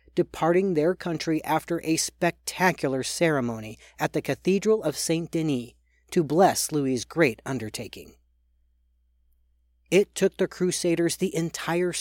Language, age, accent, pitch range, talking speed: English, 40-59, American, 115-175 Hz, 115 wpm